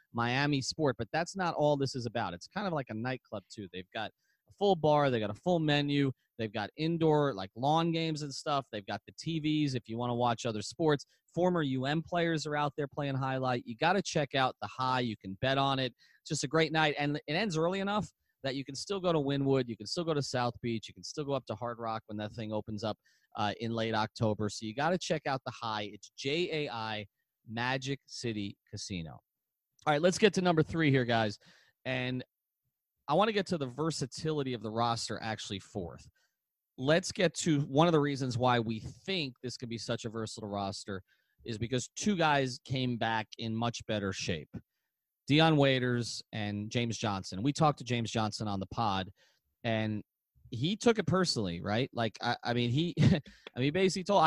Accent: American